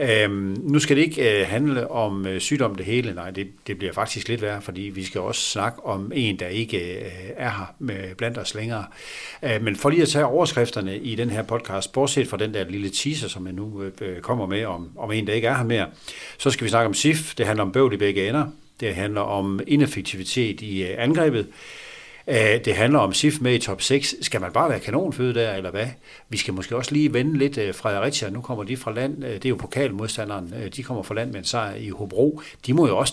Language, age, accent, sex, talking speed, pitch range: Danish, 60-79, native, male, 240 wpm, 100-130 Hz